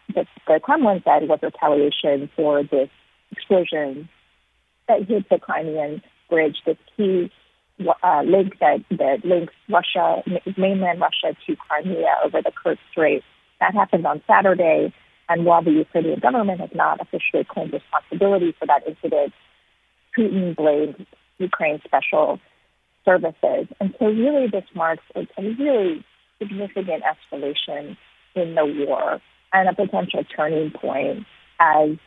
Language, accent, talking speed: English, American, 130 wpm